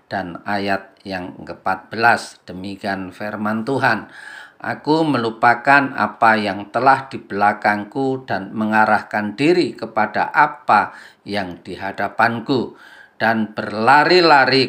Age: 40-59